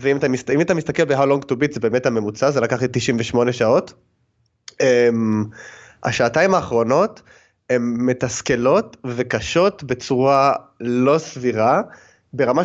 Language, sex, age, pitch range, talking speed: Hebrew, male, 20-39, 125-180 Hz, 125 wpm